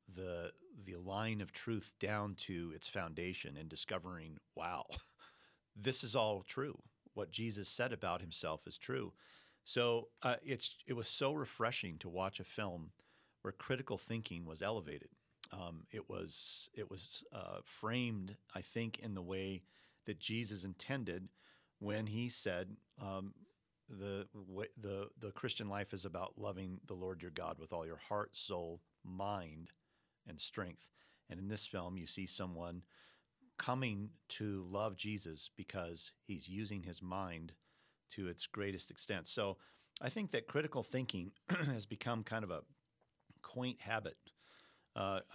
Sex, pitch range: male, 90-110 Hz